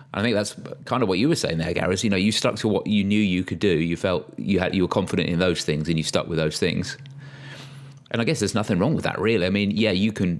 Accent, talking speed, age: British, 300 wpm, 30-49